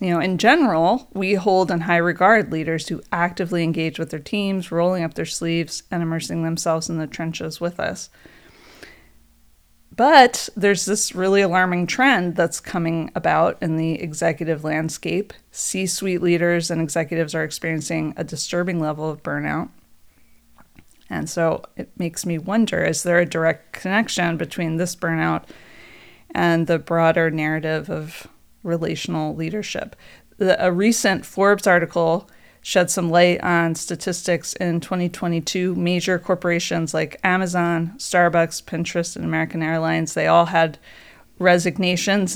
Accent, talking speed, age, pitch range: American, 140 wpm, 20-39, 160-180 Hz